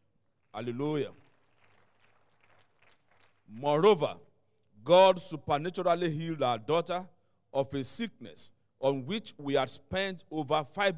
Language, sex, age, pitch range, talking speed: English, male, 50-69, 115-165 Hz, 95 wpm